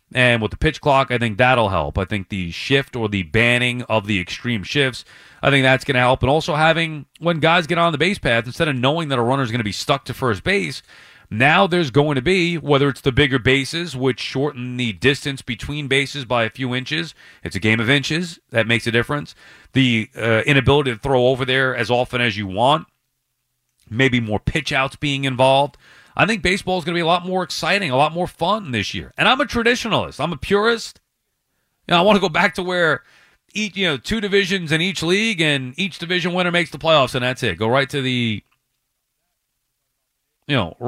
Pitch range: 120-160 Hz